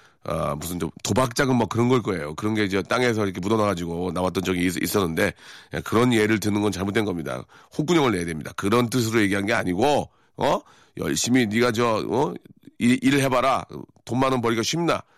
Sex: male